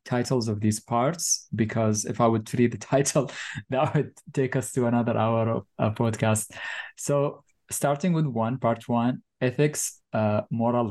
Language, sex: English, male